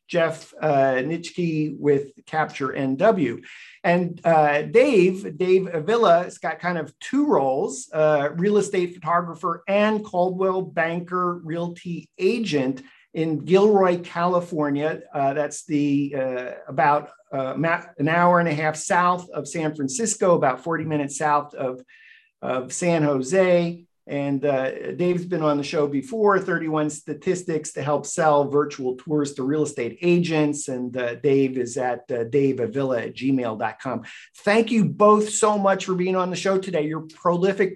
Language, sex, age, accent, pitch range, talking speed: English, male, 50-69, American, 150-180 Hz, 150 wpm